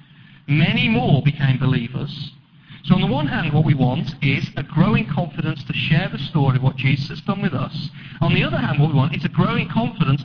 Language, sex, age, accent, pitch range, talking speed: English, male, 40-59, British, 145-165 Hz, 220 wpm